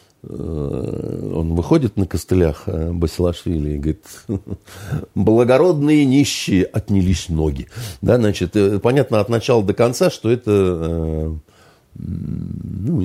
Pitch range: 85-105 Hz